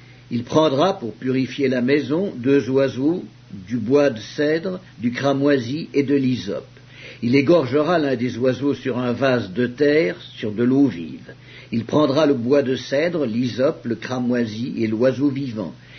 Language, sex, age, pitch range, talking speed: English, male, 60-79, 125-145 Hz, 160 wpm